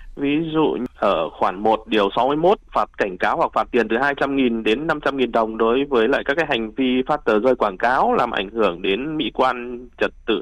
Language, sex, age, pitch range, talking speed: Vietnamese, male, 20-39, 110-140 Hz, 220 wpm